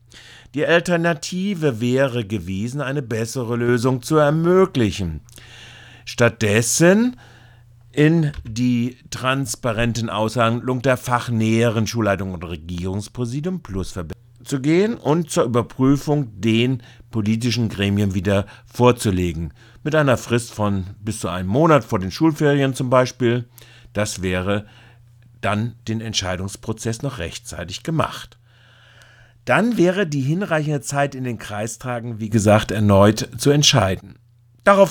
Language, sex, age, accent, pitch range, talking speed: German, male, 50-69, German, 100-125 Hz, 110 wpm